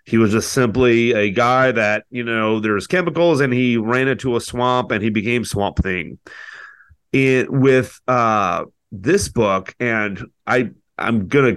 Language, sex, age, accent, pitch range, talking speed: English, male, 30-49, American, 105-125 Hz, 160 wpm